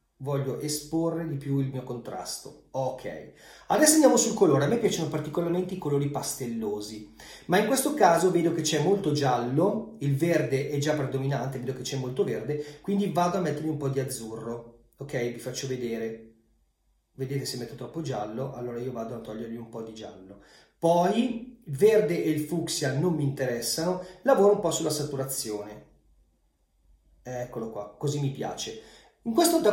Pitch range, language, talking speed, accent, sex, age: 130-180 Hz, Italian, 175 wpm, native, male, 30-49